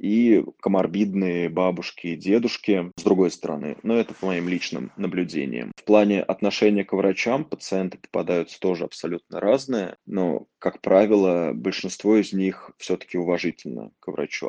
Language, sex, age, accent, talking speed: Russian, male, 20-39, native, 140 wpm